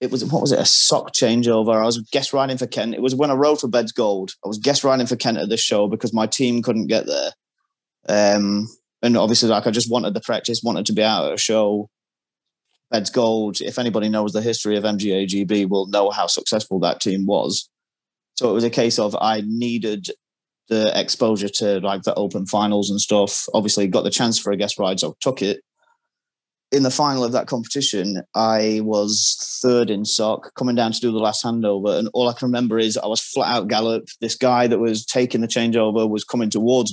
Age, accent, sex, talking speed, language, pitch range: 30-49, British, male, 225 wpm, English, 105-125 Hz